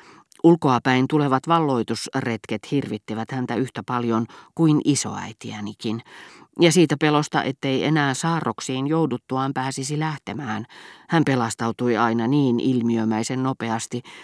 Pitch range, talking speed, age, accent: 120-150 Hz, 100 wpm, 40-59, native